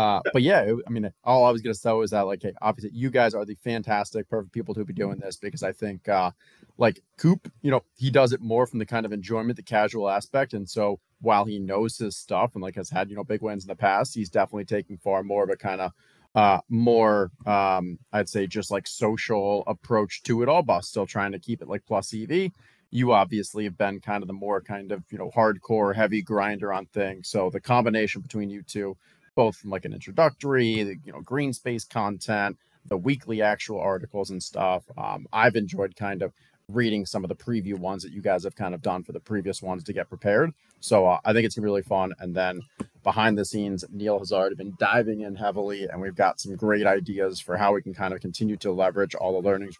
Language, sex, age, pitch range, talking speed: English, male, 30-49, 95-110 Hz, 235 wpm